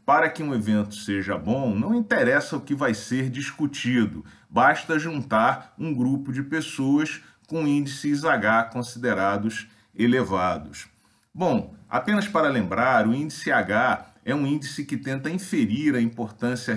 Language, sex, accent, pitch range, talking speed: Portuguese, male, Brazilian, 115-165 Hz, 140 wpm